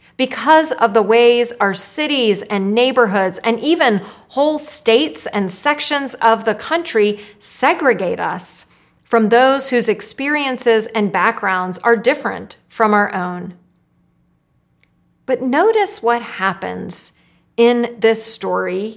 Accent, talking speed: American, 115 wpm